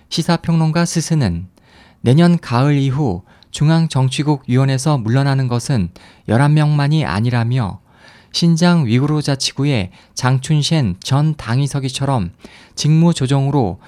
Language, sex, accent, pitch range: Korean, male, native, 110-150 Hz